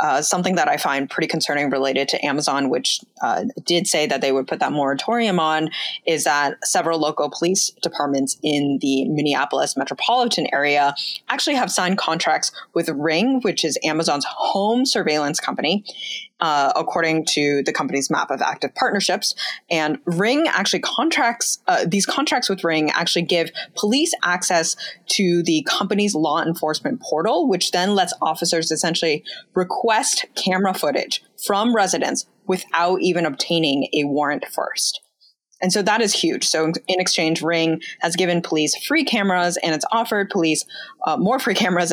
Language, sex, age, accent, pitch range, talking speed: English, female, 20-39, American, 155-200 Hz, 155 wpm